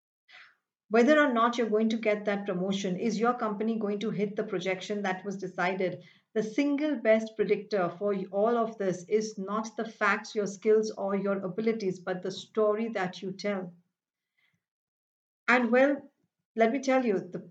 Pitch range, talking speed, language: 195-235 Hz, 170 wpm, English